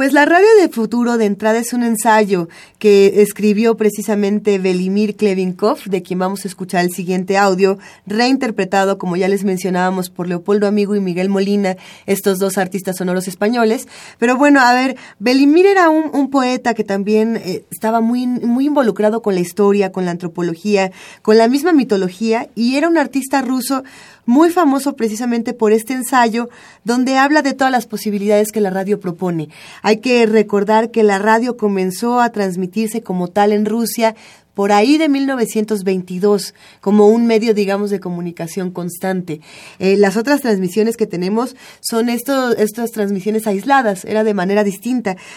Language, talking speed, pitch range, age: Spanish, 165 wpm, 195-245 Hz, 30-49